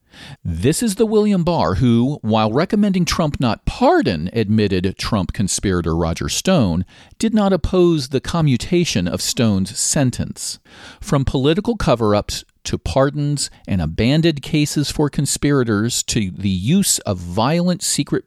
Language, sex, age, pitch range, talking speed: English, male, 40-59, 100-145 Hz, 130 wpm